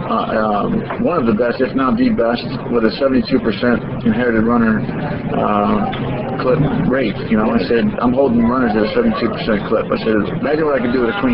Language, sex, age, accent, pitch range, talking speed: English, male, 50-69, American, 120-135 Hz, 205 wpm